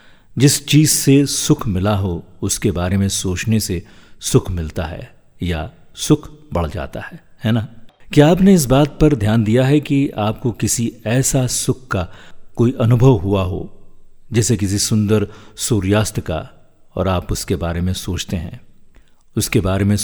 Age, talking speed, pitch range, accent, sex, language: 50-69, 160 wpm, 95-125 Hz, native, male, Hindi